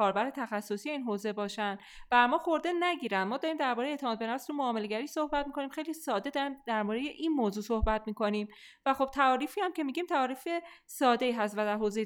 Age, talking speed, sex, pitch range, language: 30-49, 195 wpm, female, 215-295 Hz, Persian